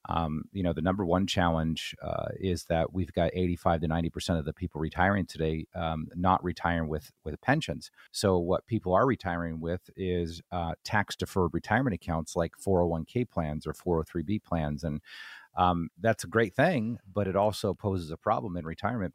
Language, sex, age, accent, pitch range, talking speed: English, male, 40-59, American, 85-100 Hz, 180 wpm